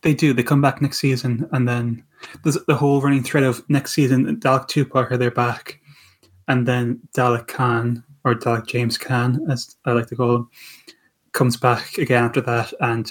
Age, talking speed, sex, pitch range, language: 10-29, 190 wpm, male, 120-140 Hz, English